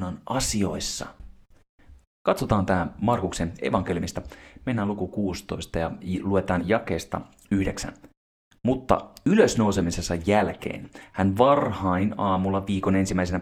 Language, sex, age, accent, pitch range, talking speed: Finnish, male, 30-49, native, 90-105 Hz, 95 wpm